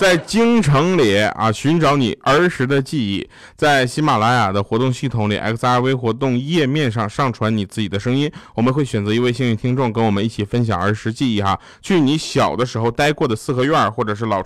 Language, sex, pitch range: Chinese, male, 110-155 Hz